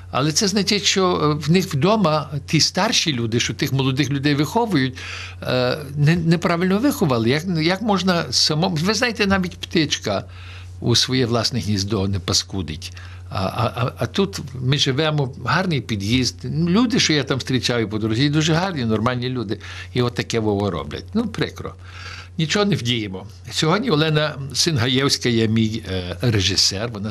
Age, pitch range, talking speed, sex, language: 60-79, 110-170 Hz, 155 wpm, male, Ukrainian